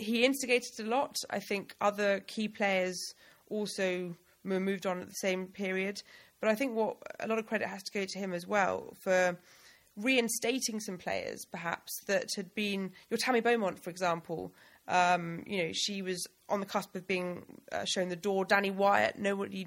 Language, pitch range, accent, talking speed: English, 180-210 Hz, British, 185 wpm